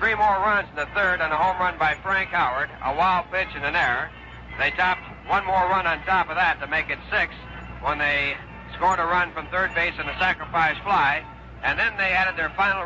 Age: 60-79